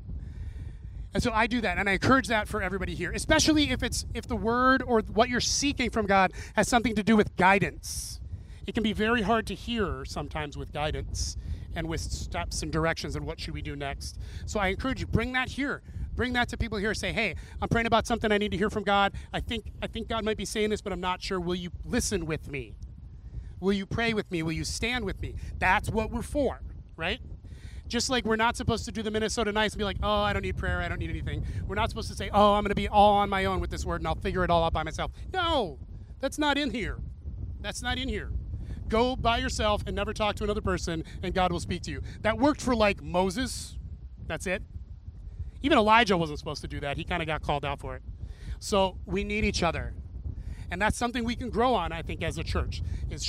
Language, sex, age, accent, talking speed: English, male, 30-49, American, 245 wpm